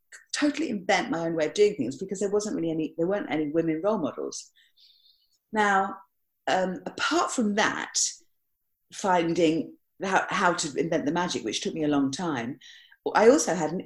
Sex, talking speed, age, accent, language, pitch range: female, 180 wpm, 40-59, British, English, 165-235 Hz